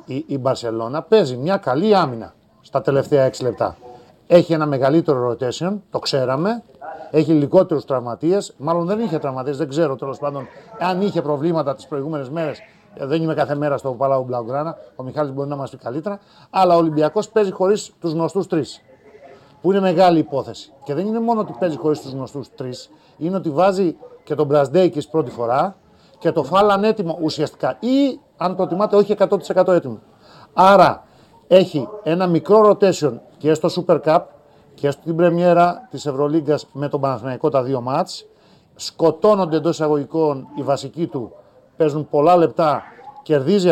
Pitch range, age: 140-185 Hz, 40-59